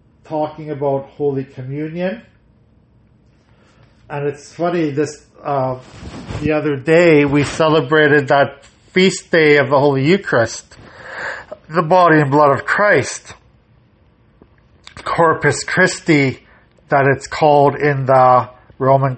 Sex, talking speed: male, 110 wpm